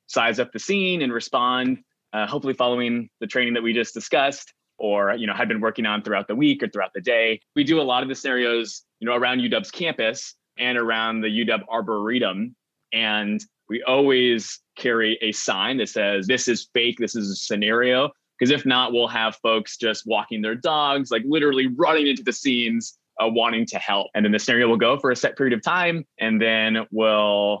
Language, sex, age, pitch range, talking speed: English, male, 20-39, 105-130 Hz, 210 wpm